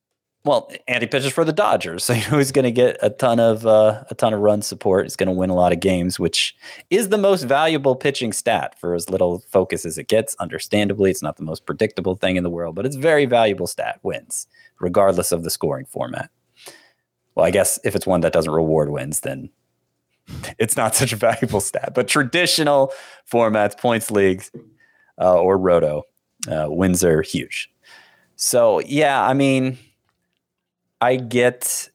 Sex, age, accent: male, 30-49, American